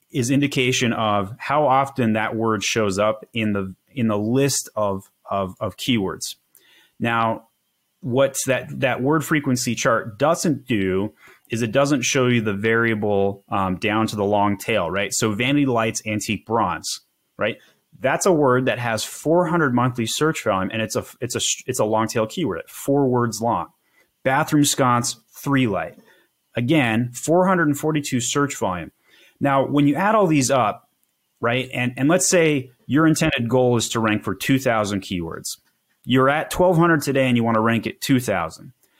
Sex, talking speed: male, 165 wpm